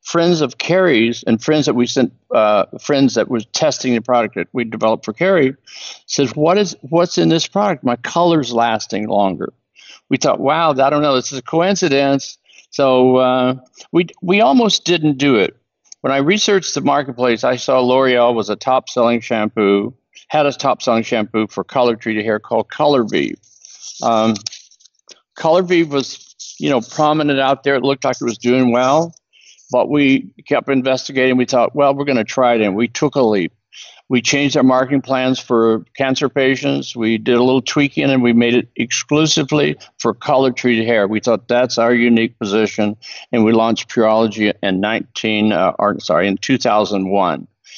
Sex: male